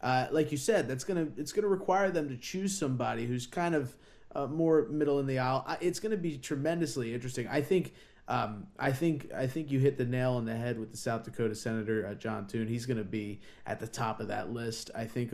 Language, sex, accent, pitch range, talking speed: English, male, American, 125-155 Hz, 235 wpm